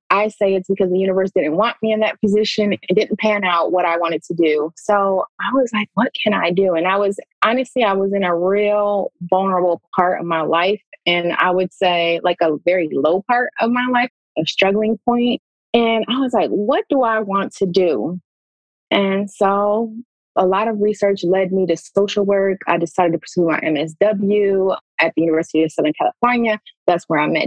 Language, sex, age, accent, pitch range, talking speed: English, female, 20-39, American, 175-215 Hz, 210 wpm